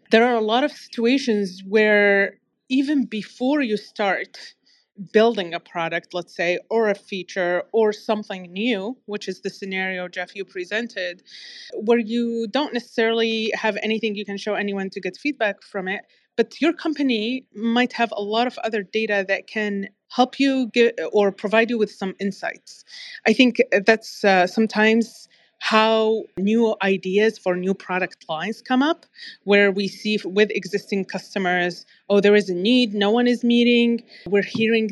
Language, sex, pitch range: English, female, 195-235 Hz